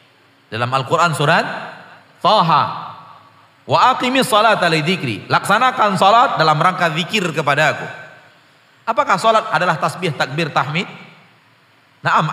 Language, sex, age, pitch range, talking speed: Indonesian, male, 40-59, 125-170 Hz, 85 wpm